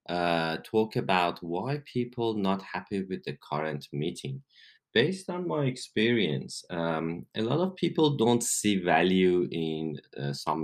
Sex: male